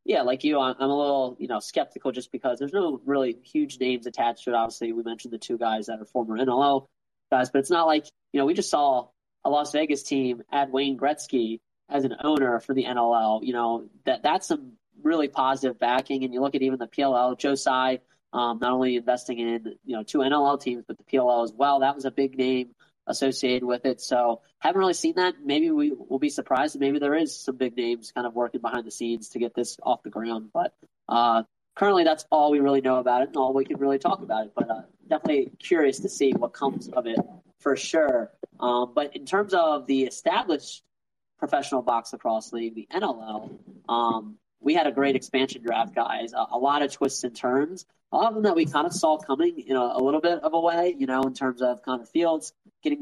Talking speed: 235 wpm